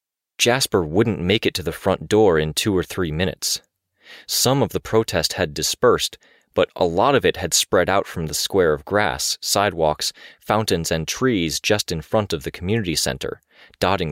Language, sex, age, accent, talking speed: English, male, 30-49, American, 185 wpm